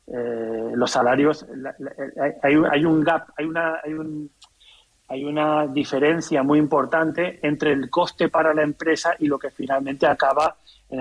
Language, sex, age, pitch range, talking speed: Spanish, male, 30-49, 125-165 Hz, 135 wpm